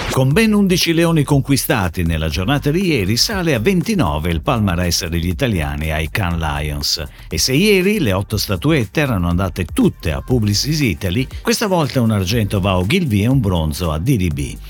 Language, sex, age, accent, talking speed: Italian, male, 50-69, native, 175 wpm